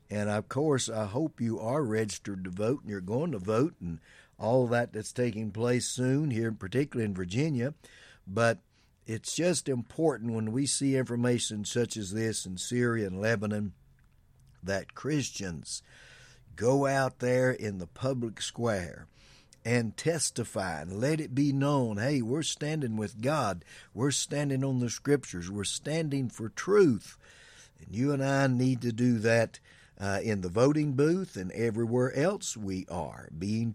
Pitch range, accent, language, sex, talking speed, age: 100-135 Hz, American, English, male, 160 wpm, 60-79